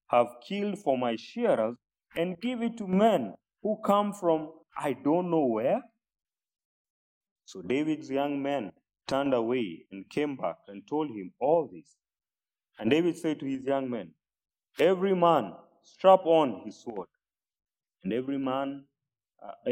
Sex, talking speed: male, 145 wpm